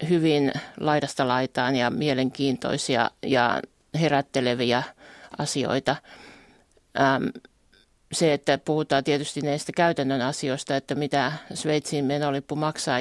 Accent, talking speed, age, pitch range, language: native, 95 wpm, 50-69, 135-150 Hz, Finnish